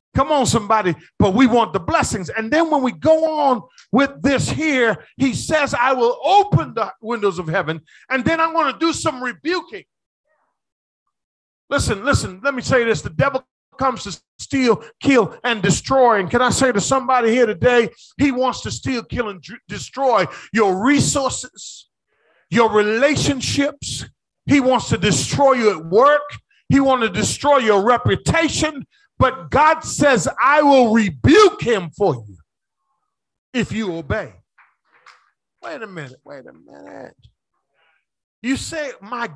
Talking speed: 150 wpm